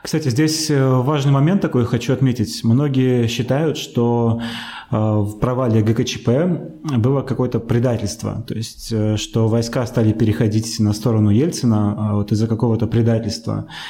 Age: 20-39